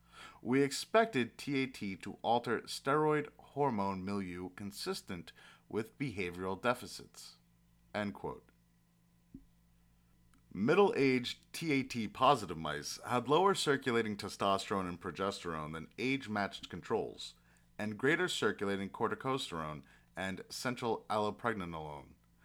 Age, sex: 30-49, male